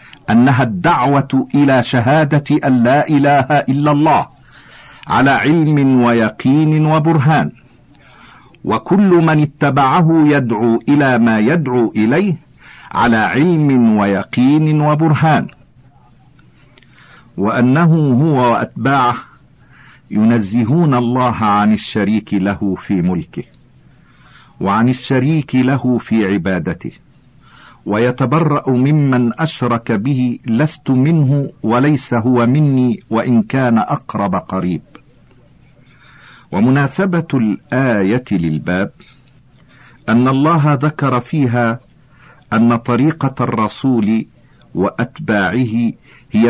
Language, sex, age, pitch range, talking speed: Arabic, male, 50-69, 115-145 Hz, 85 wpm